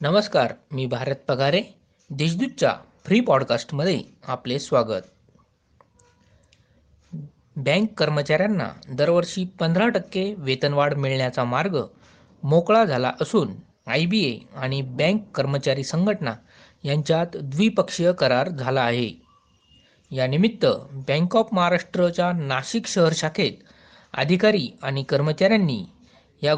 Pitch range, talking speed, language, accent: 135-185 Hz, 100 wpm, Marathi, native